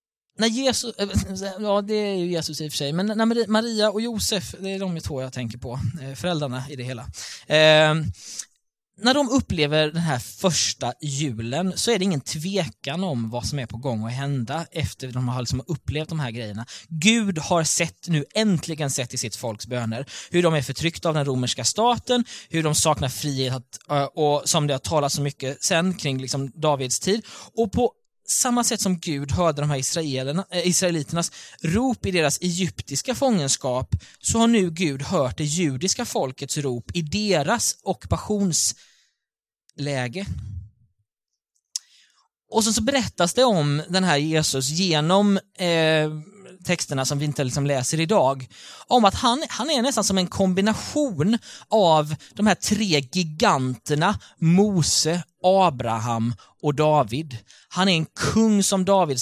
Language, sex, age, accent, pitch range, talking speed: Swedish, male, 20-39, native, 135-195 Hz, 160 wpm